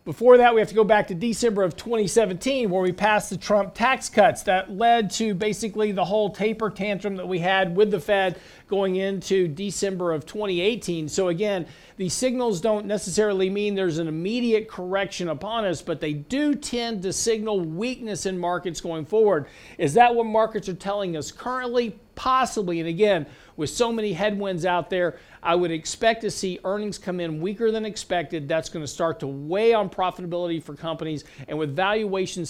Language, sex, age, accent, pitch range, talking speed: English, male, 50-69, American, 165-210 Hz, 190 wpm